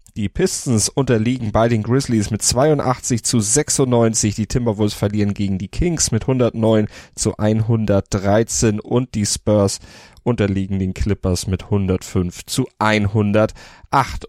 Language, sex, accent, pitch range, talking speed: German, male, German, 105-130 Hz, 125 wpm